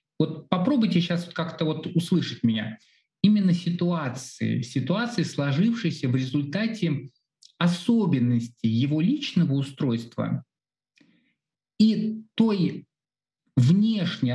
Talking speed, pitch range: 85 wpm, 135-180 Hz